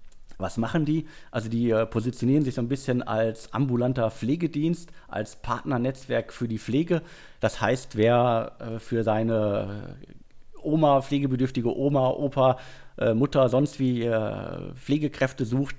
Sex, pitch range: male, 105-130 Hz